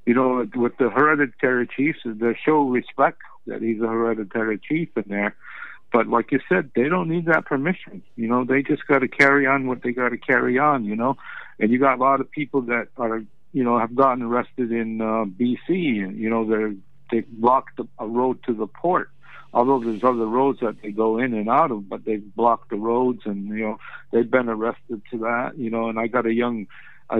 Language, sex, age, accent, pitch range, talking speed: English, male, 60-79, American, 110-125 Hz, 220 wpm